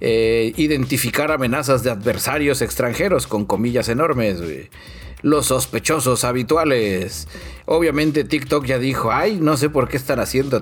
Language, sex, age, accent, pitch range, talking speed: Spanish, male, 40-59, Mexican, 115-155 Hz, 135 wpm